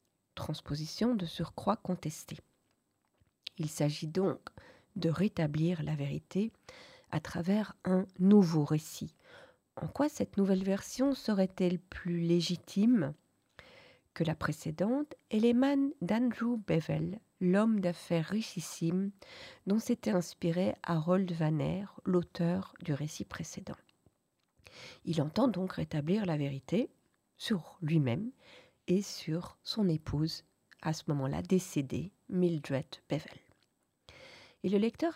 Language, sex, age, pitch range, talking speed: French, female, 40-59, 165-220 Hz, 110 wpm